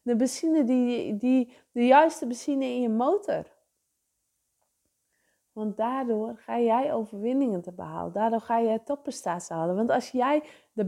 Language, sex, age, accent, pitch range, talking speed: English, female, 20-39, Dutch, 225-280 Hz, 150 wpm